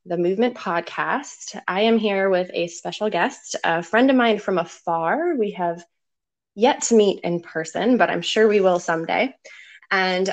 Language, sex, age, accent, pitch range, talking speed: English, female, 20-39, American, 170-205 Hz, 175 wpm